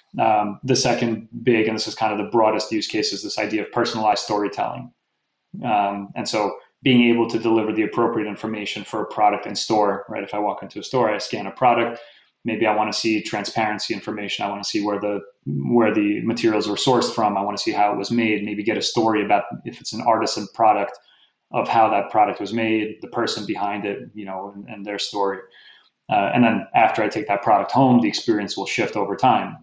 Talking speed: 230 wpm